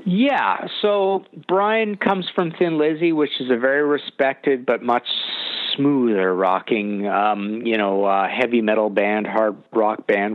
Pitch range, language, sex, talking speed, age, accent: 120-155 Hz, English, male, 150 wpm, 50-69, American